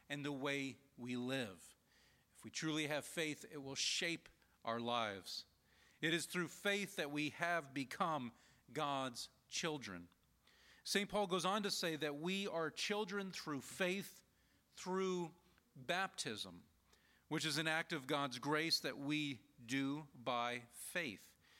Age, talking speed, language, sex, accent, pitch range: 40-59, 140 wpm, English, male, American, 135-170 Hz